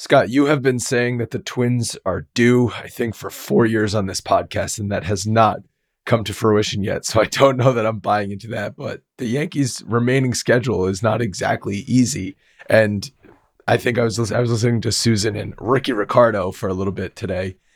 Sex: male